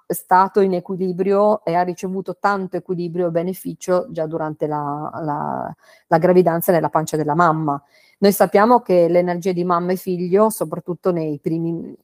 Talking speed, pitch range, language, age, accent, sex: 155 wpm, 160-185 Hz, Italian, 40-59, native, female